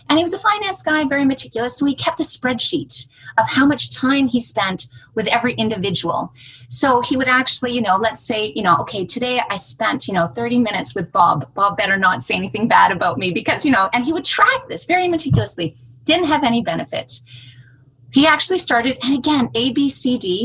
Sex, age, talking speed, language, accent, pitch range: female, 30-49, 215 wpm, English, American, 220-290 Hz